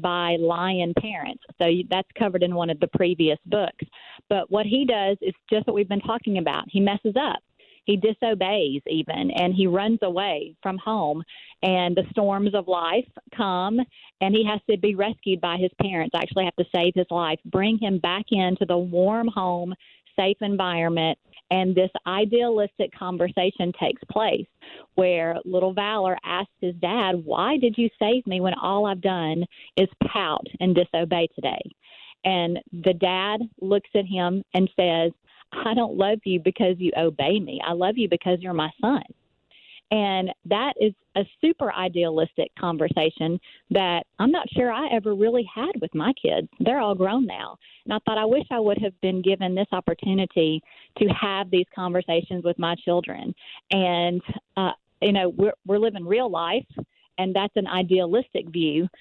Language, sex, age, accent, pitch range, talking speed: English, female, 40-59, American, 175-210 Hz, 170 wpm